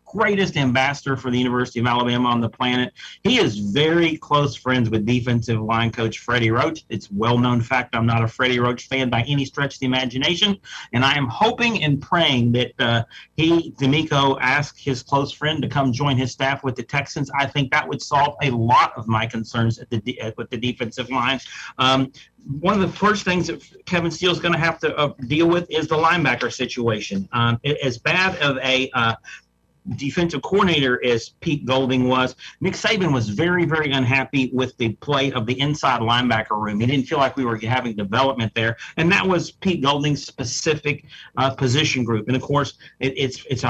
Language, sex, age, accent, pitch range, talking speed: English, male, 40-59, American, 120-150 Hz, 200 wpm